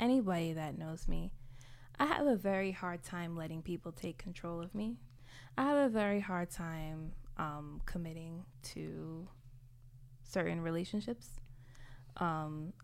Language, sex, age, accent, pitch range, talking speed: English, female, 20-39, American, 125-175 Hz, 130 wpm